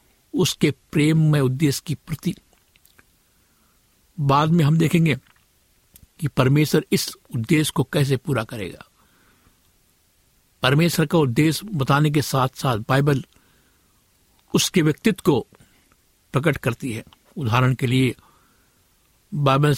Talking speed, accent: 110 wpm, native